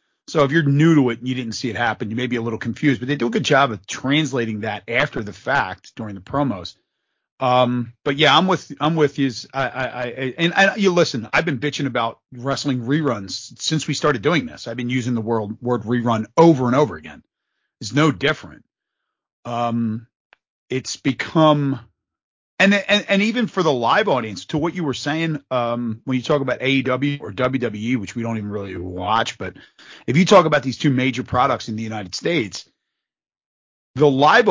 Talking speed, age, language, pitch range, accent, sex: 205 wpm, 40-59, English, 120-155 Hz, American, male